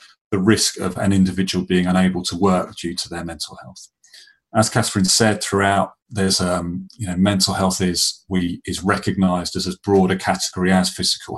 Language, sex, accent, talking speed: English, male, British, 175 wpm